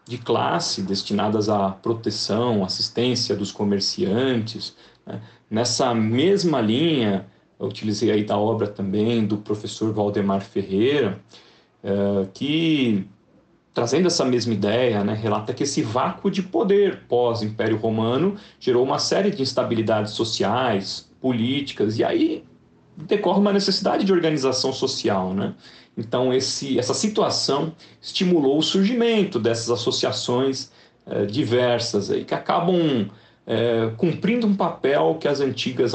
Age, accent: 40-59, Brazilian